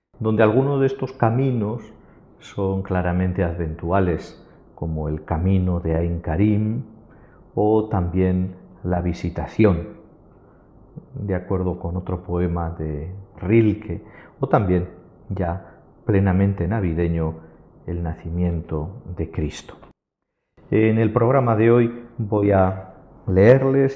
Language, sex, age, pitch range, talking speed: Spanish, male, 50-69, 90-110 Hz, 105 wpm